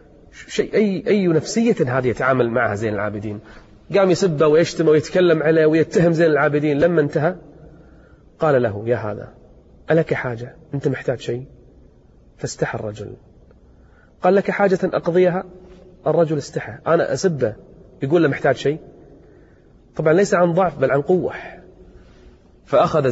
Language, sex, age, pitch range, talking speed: Arabic, male, 30-49, 115-160 Hz, 130 wpm